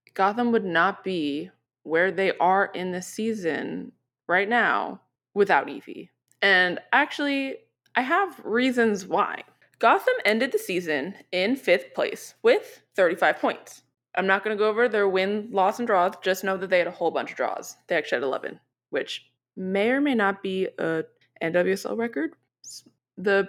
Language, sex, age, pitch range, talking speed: English, female, 20-39, 180-255 Hz, 165 wpm